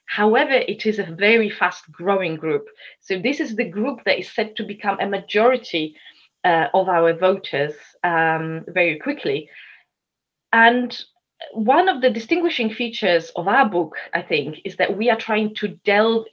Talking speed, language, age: 165 wpm, English, 30-49